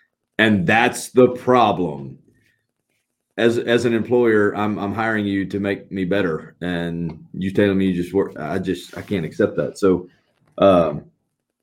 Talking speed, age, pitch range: 160 wpm, 30-49, 85-105 Hz